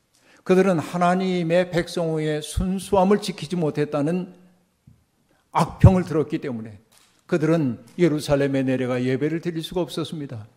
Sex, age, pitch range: male, 50-69, 135-175 Hz